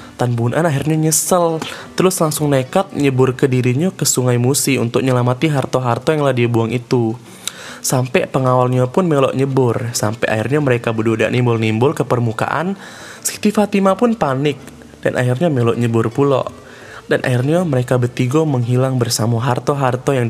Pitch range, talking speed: 125-155 Hz, 140 wpm